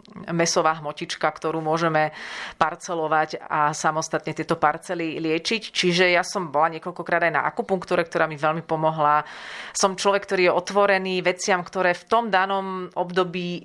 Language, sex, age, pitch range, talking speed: Slovak, female, 30-49, 160-185 Hz, 145 wpm